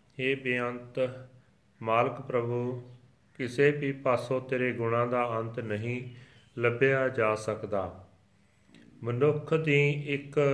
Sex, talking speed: male, 100 wpm